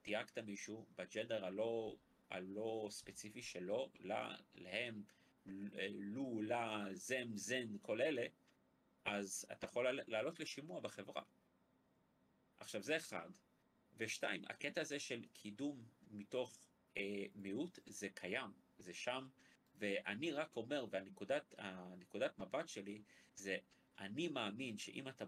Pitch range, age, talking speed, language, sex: 105-150 Hz, 30-49, 115 wpm, Hebrew, male